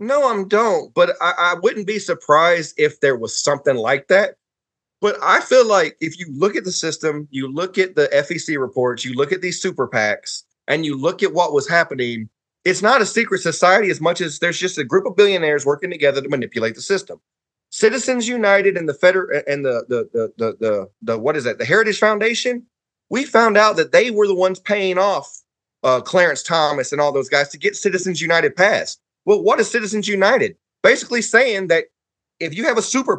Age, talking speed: 30-49, 215 wpm